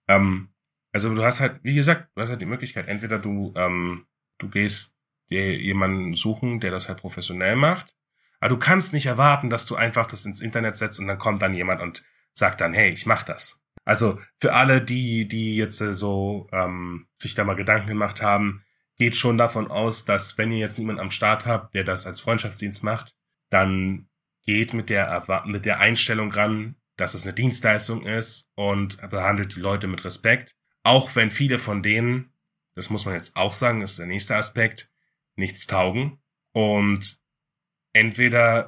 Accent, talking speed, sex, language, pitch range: German, 180 wpm, male, German, 100-120 Hz